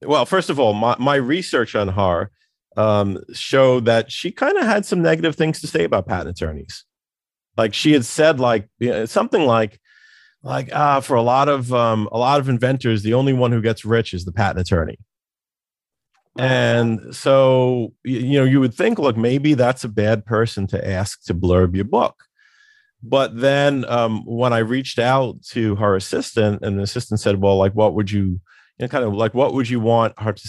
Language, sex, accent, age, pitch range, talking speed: English, male, American, 40-59, 105-135 Hz, 200 wpm